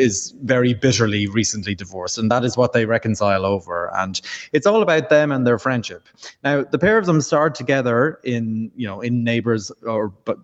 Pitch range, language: 105-135 Hz, English